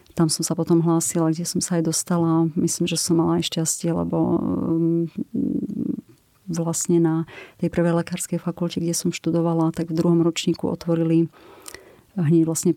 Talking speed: 155 wpm